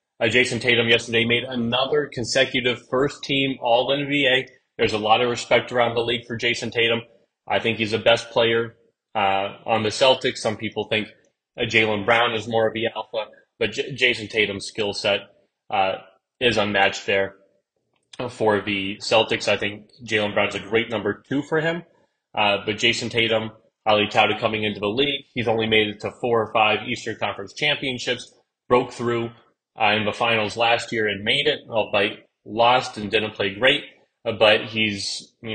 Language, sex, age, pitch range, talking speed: English, male, 30-49, 105-120 Hz, 175 wpm